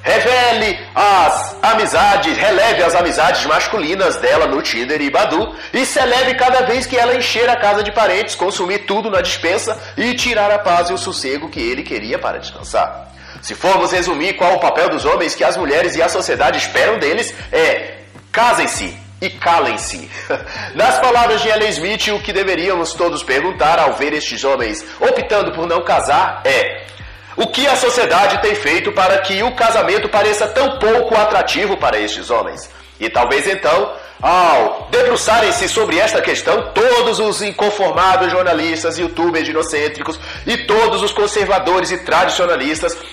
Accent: Brazilian